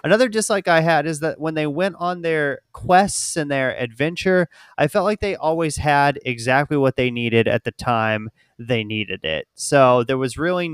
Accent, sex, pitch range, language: American, male, 115-145 Hz, English